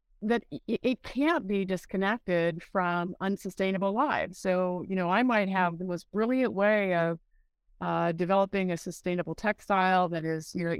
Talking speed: 155 wpm